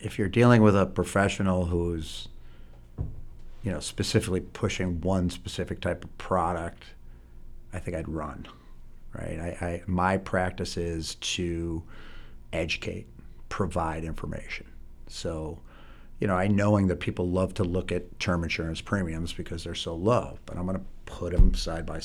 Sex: male